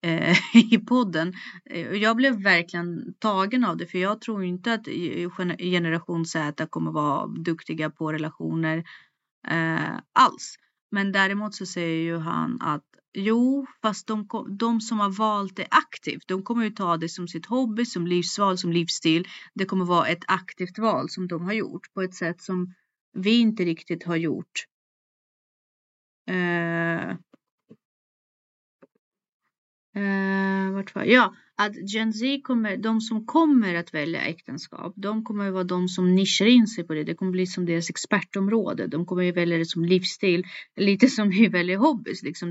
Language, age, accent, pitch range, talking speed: Swedish, 30-49, native, 170-205 Hz, 160 wpm